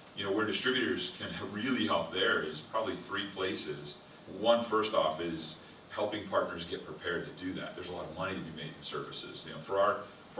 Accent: American